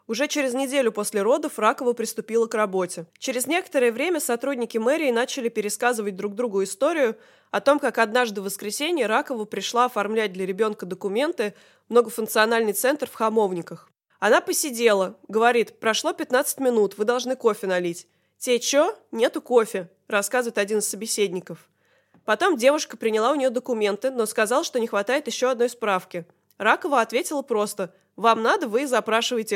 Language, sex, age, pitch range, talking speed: Russian, female, 20-39, 210-275 Hz, 155 wpm